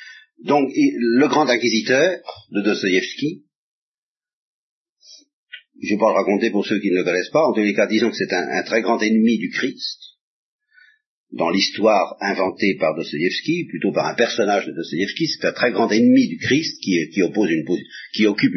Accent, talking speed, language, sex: French, 185 wpm, French, male